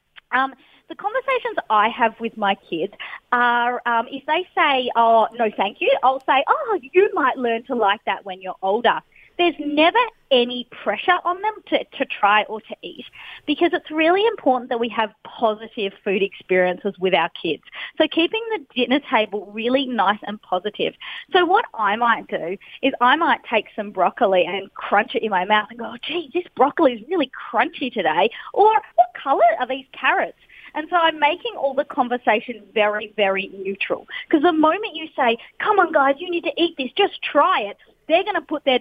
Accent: Australian